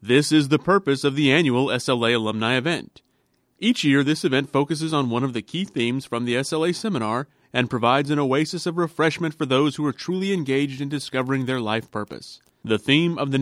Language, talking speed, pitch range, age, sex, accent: English, 205 wpm, 120-160 Hz, 30-49, male, American